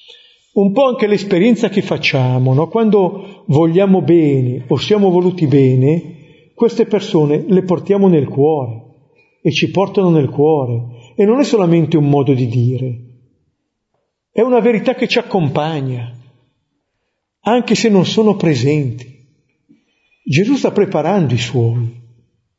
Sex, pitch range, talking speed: male, 140-185 Hz, 130 wpm